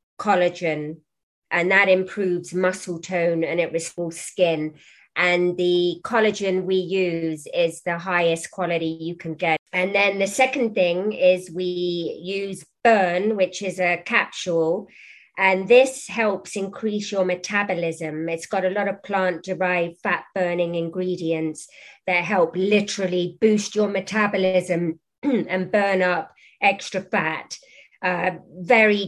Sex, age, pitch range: female, 30-49, 175-205 Hz